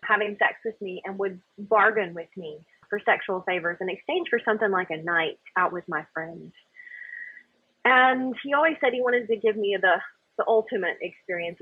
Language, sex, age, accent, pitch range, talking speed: English, female, 30-49, American, 180-280 Hz, 185 wpm